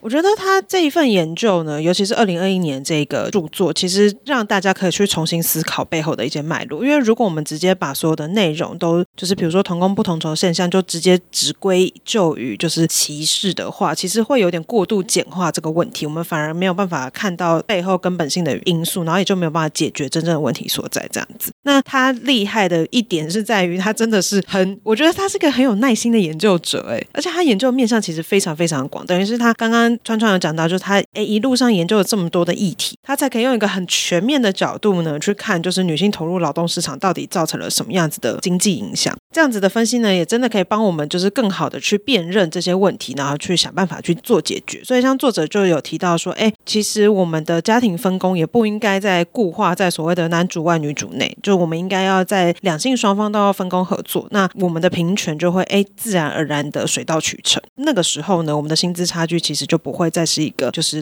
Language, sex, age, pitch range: Chinese, female, 30-49, 165-215 Hz